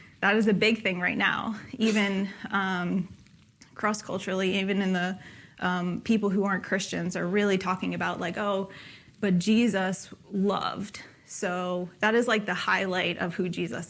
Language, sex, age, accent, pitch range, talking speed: English, female, 20-39, American, 185-215 Hz, 155 wpm